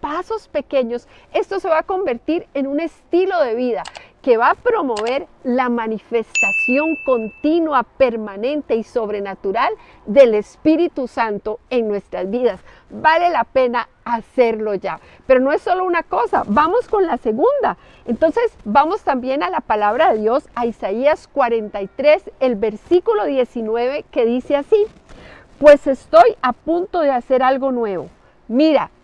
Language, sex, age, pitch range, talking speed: Spanish, female, 50-69, 240-320 Hz, 145 wpm